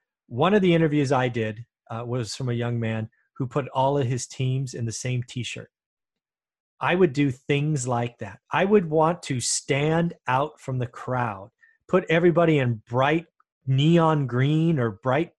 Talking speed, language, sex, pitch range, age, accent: 175 wpm, English, male, 130-175 Hz, 30-49, American